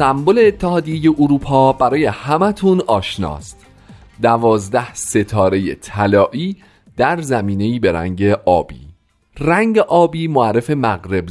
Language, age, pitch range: Persian, 40-59, 95-135 Hz